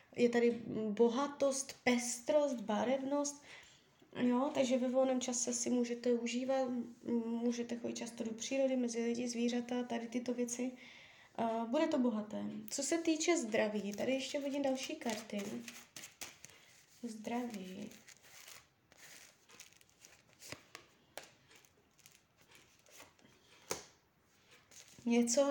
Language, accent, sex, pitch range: Czech, native, female, 235-270 Hz